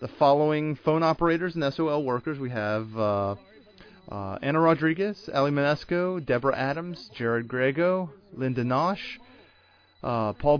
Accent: American